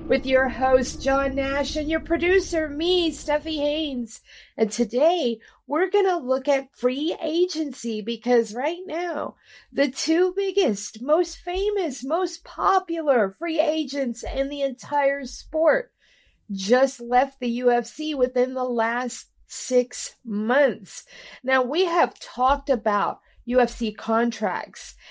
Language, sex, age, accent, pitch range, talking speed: English, female, 40-59, American, 220-310 Hz, 125 wpm